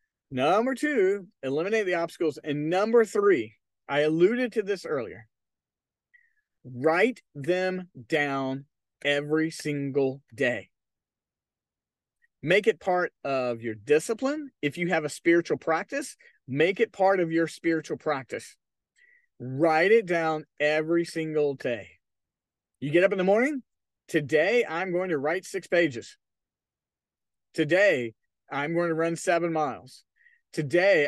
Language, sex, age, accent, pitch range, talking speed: English, male, 40-59, American, 140-190 Hz, 125 wpm